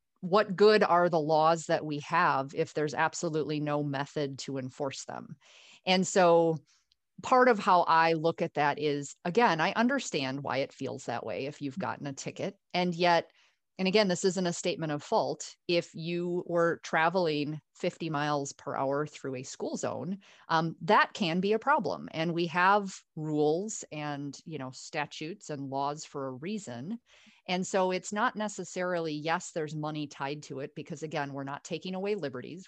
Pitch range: 145-185 Hz